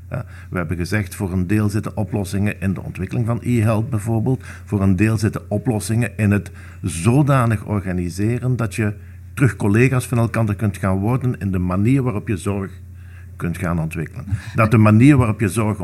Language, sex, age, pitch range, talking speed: Dutch, male, 50-69, 95-120 Hz, 180 wpm